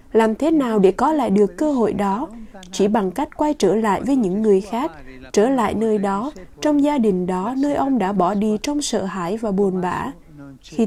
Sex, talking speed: female, 220 wpm